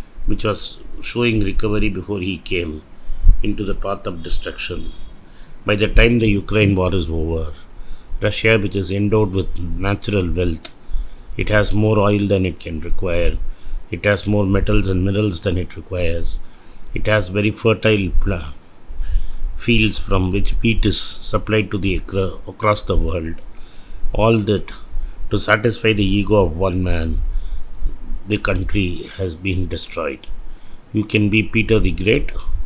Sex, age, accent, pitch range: male, 50-69, native, 85-105 Hz